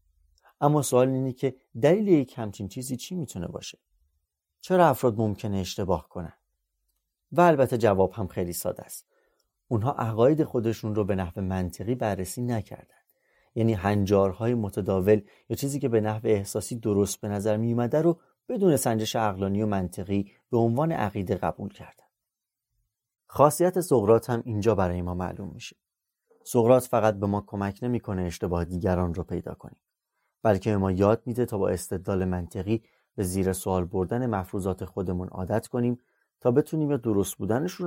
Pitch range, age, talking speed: 95-125 Hz, 30-49, 150 wpm